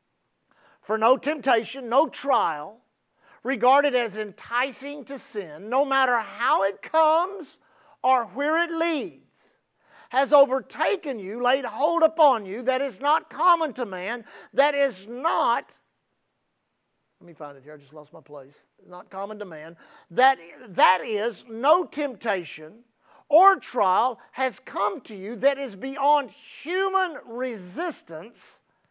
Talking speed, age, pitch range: 135 wpm, 50-69, 230-310 Hz